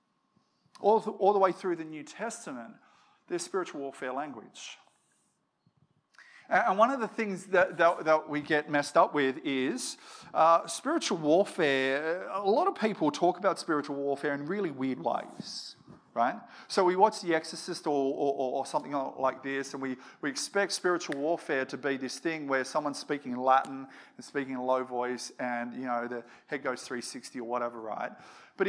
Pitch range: 135-190 Hz